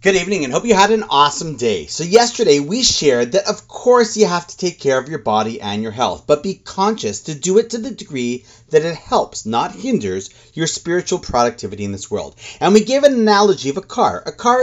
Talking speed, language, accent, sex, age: 235 wpm, English, American, male, 30-49